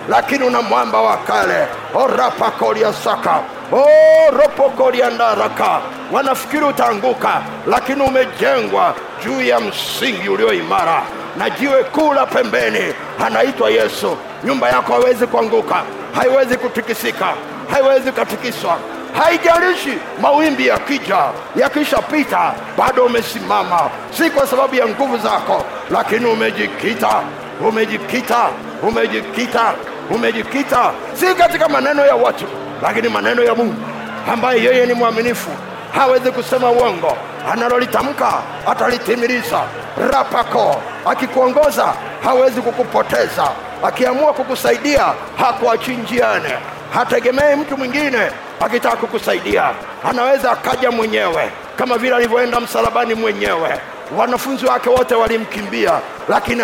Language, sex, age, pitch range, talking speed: Swahili, male, 50-69, 240-280 Hz, 100 wpm